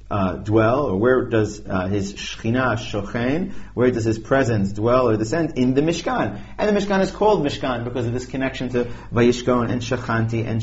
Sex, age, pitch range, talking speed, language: male, 30-49, 105-145 Hz, 190 wpm, English